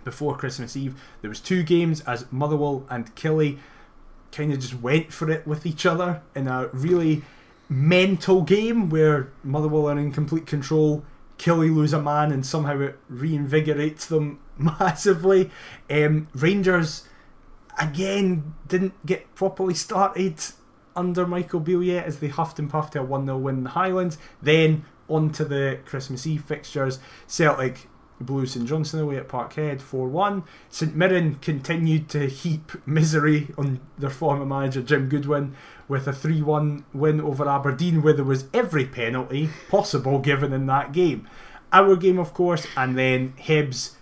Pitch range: 135-170 Hz